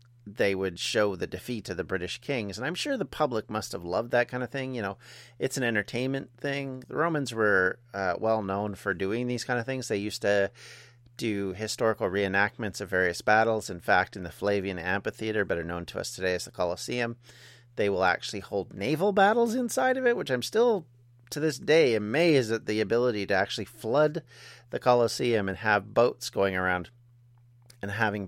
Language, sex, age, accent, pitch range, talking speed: English, male, 40-59, American, 100-130 Hz, 195 wpm